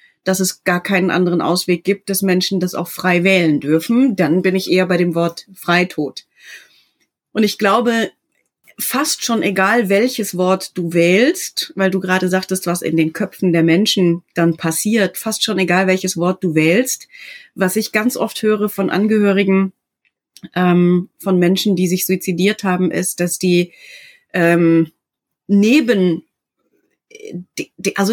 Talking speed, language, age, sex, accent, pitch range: 145 wpm, German, 30-49, female, German, 170-200 Hz